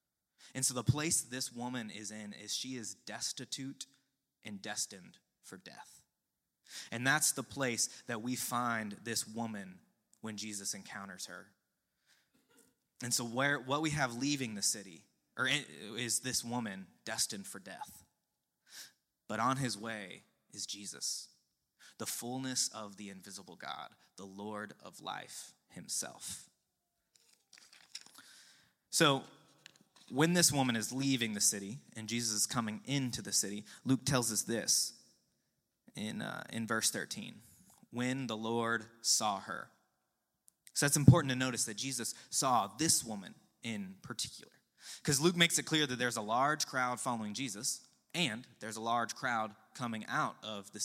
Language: English